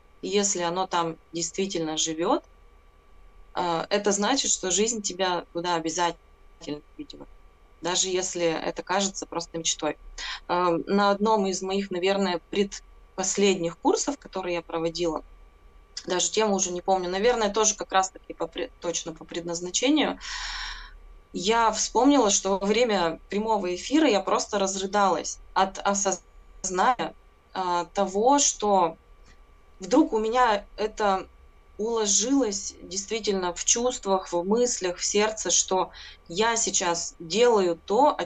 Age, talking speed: 20-39, 115 wpm